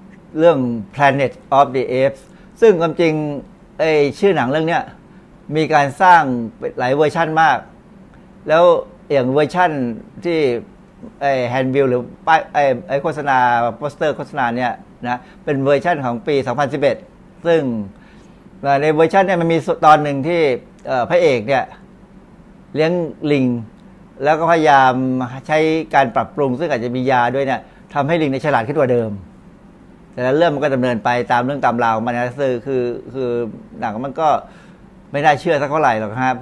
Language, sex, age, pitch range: Thai, male, 60-79, 125-165 Hz